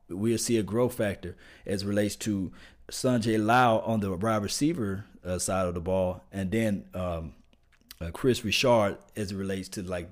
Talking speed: 185 wpm